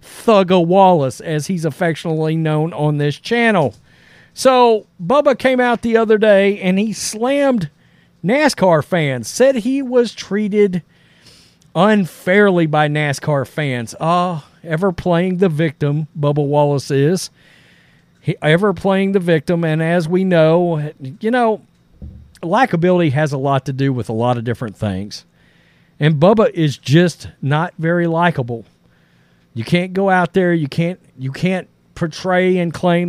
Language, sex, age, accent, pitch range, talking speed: English, male, 50-69, American, 155-190 Hz, 140 wpm